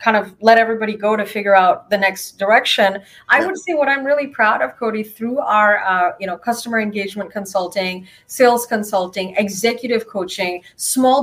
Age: 30-49